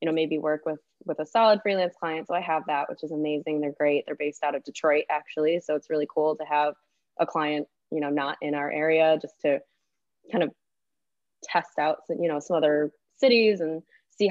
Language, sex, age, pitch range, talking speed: English, female, 20-39, 155-180 Hz, 220 wpm